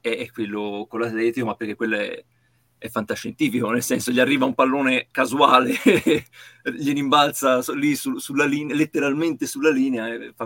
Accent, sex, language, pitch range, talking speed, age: native, male, Italian, 115-135 Hz, 160 wpm, 30-49